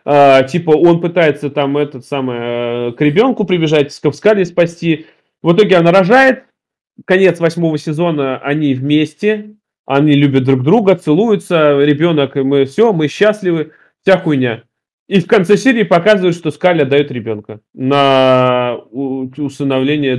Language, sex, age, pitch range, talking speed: Russian, male, 20-39, 140-195 Hz, 135 wpm